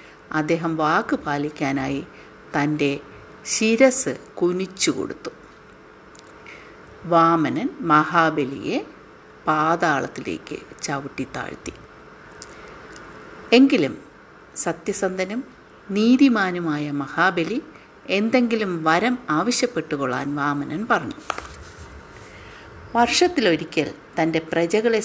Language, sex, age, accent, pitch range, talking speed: Malayalam, female, 50-69, native, 155-250 Hz, 55 wpm